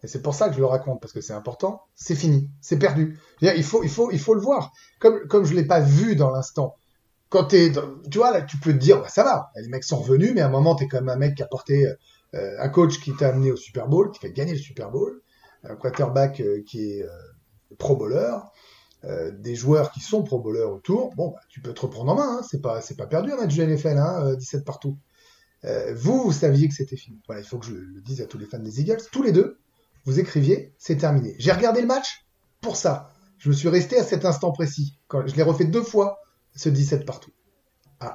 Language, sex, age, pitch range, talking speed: French, male, 30-49, 130-165 Hz, 260 wpm